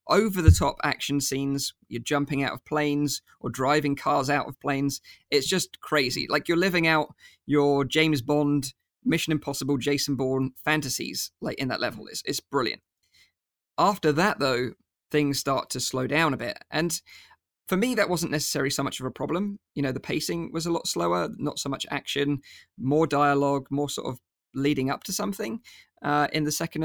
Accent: British